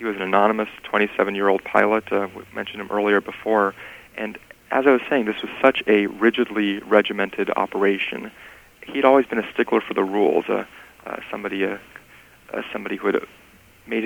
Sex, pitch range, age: male, 100-110 Hz, 40-59